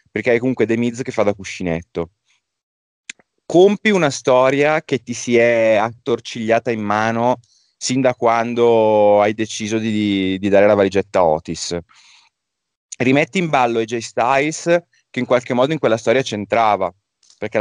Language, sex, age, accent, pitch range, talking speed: Italian, male, 30-49, native, 95-120 Hz, 155 wpm